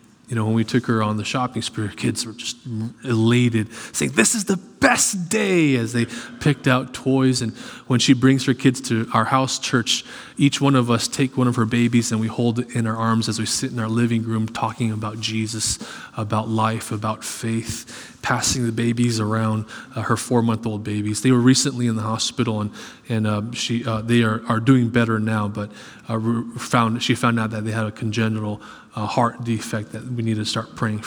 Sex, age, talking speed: male, 20-39, 210 wpm